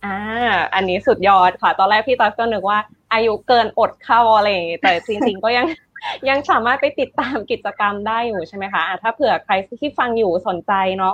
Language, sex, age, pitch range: Thai, female, 20-39, 195-255 Hz